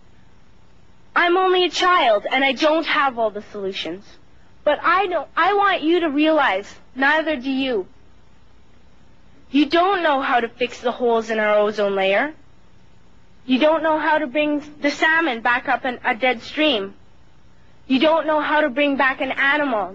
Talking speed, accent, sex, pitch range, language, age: 170 wpm, American, female, 245-305 Hz, English, 30-49